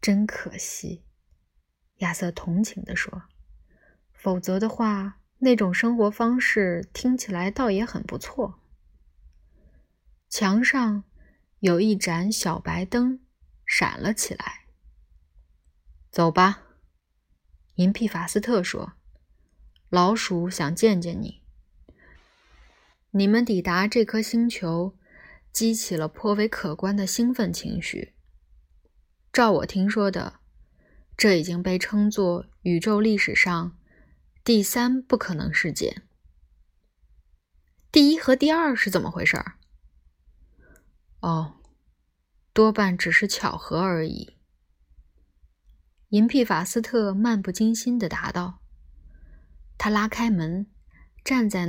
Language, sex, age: Chinese, female, 20-39